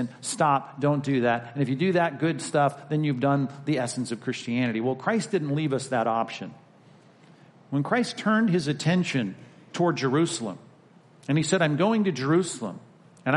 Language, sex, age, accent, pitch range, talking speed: English, male, 50-69, American, 130-180 Hz, 180 wpm